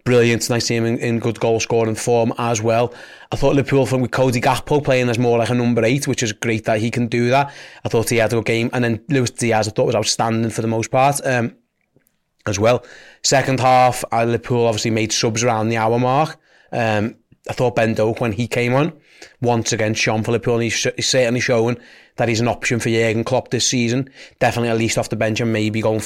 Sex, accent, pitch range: male, British, 115-135 Hz